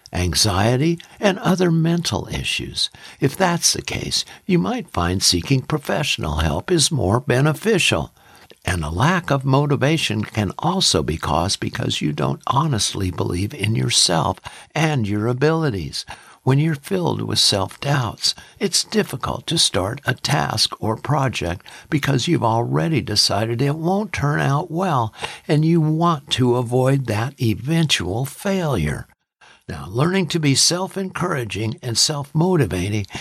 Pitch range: 110-165 Hz